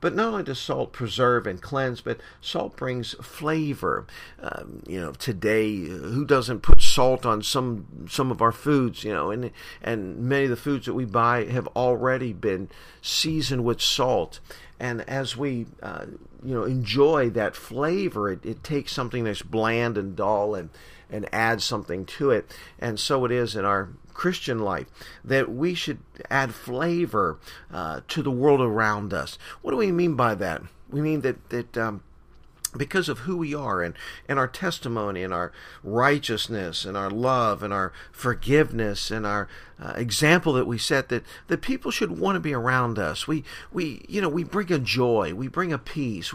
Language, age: English, 50-69